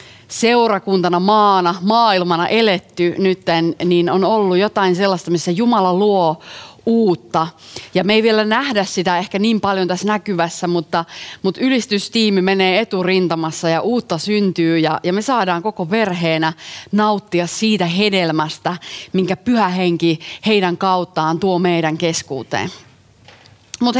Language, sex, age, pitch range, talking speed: Finnish, female, 30-49, 170-210 Hz, 125 wpm